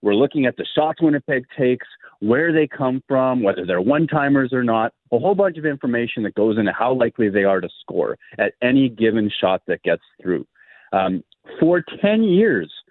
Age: 30-49